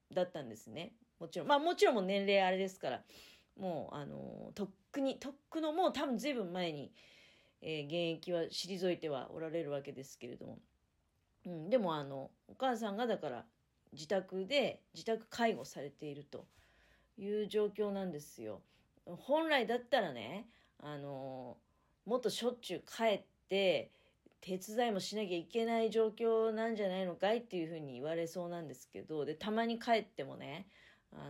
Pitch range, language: 155-225 Hz, Japanese